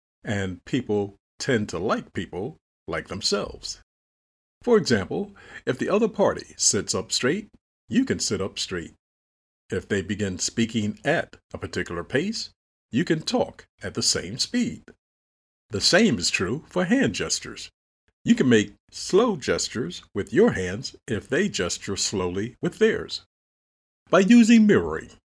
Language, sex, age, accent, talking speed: English, male, 50-69, American, 145 wpm